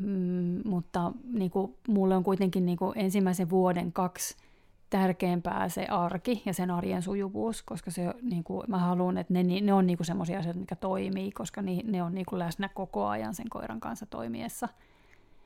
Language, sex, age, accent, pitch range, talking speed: Finnish, female, 30-49, native, 175-195 Hz, 165 wpm